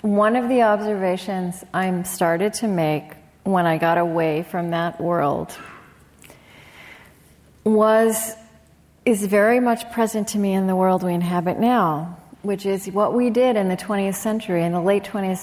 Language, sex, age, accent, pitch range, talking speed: English, female, 40-59, American, 170-215 Hz, 160 wpm